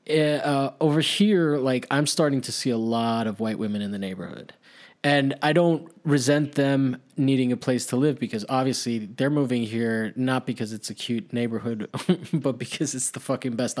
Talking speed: 185 wpm